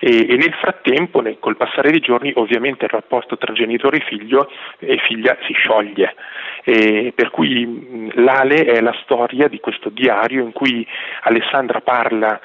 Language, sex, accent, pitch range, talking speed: Italian, male, native, 115-150 Hz, 150 wpm